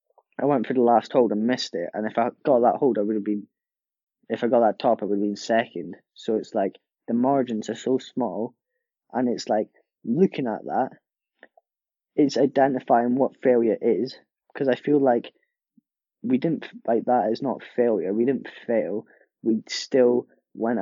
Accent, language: British, English